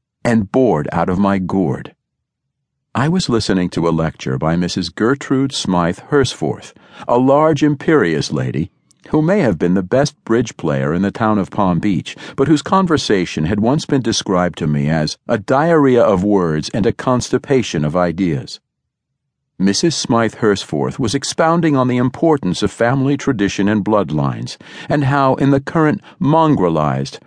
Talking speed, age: 160 wpm, 50-69